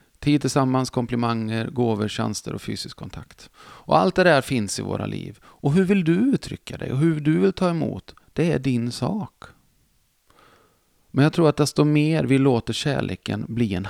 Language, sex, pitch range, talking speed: Swedish, male, 110-140 Hz, 190 wpm